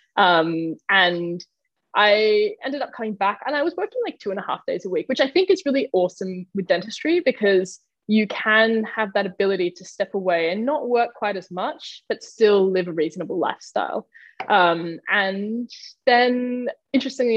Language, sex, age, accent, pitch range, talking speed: English, female, 10-29, Australian, 185-255 Hz, 180 wpm